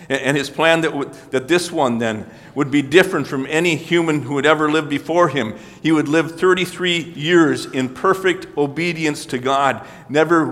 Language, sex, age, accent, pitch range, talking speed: English, male, 50-69, American, 130-165 Hz, 185 wpm